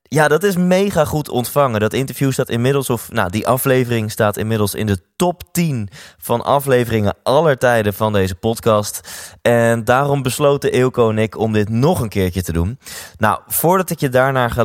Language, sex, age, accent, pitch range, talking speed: Dutch, male, 20-39, Dutch, 100-130 Hz, 190 wpm